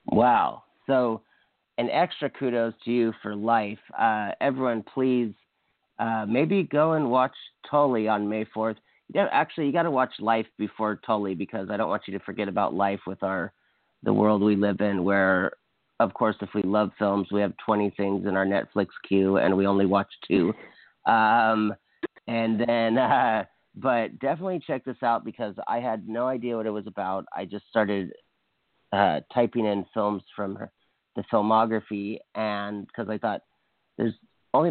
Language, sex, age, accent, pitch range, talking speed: English, male, 40-59, American, 100-115 Hz, 170 wpm